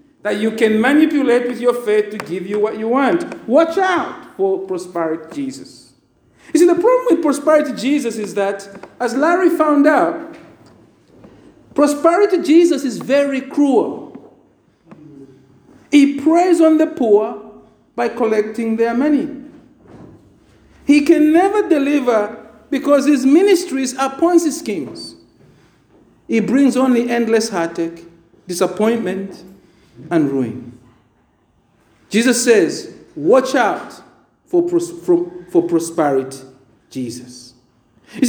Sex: male